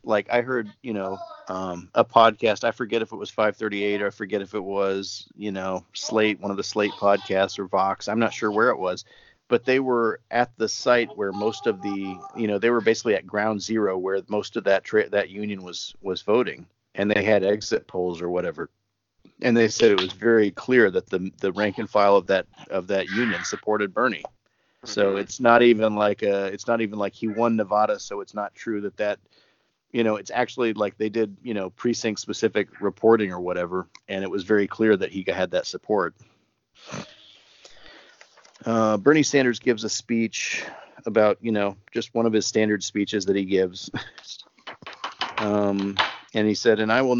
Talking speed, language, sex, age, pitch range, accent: 200 wpm, English, male, 40-59, 100-115 Hz, American